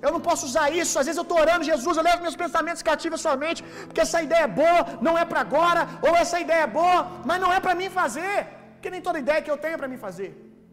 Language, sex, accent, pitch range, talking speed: Gujarati, male, Brazilian, 320-370 Hz, 275 wpm